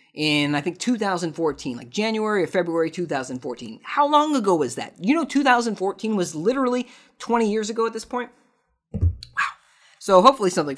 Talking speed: 160 wpm